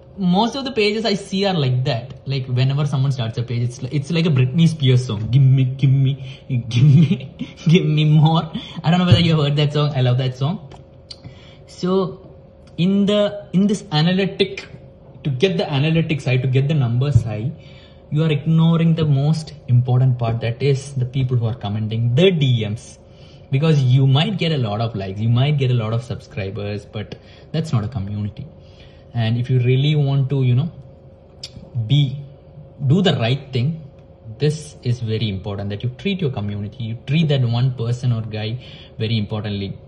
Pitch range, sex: 120-155 Hz, male